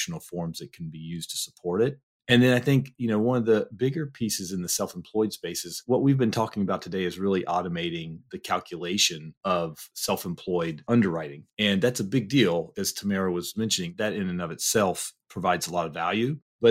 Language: English